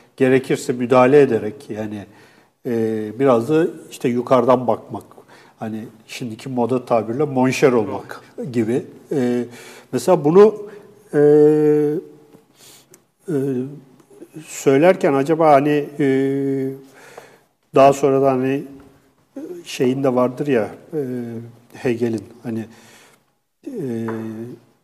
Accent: native